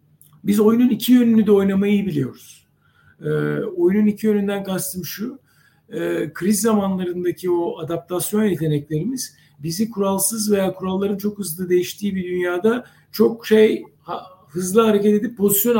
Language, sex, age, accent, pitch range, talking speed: Turkish, male, 60-79, native, 180-220 Hz, 125 wpm